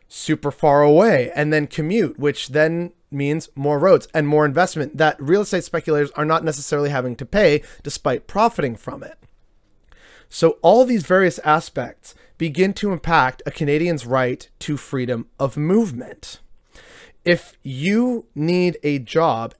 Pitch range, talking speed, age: 140-170 Hz, 145 wpm, 30-49